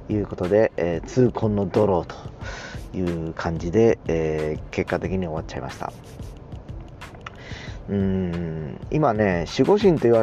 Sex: male